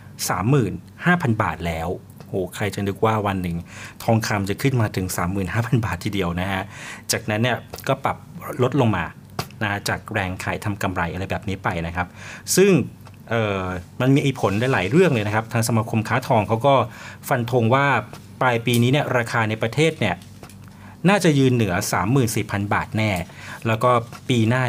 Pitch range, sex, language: 100-125 Hz, male, Thai